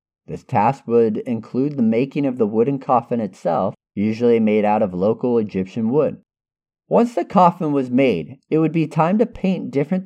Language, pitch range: English, 120-195 Hz